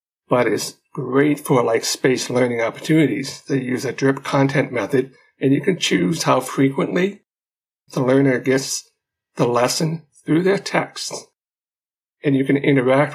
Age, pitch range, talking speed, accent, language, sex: 60-79, 130-145 Hz, 145 wpm, American, English, male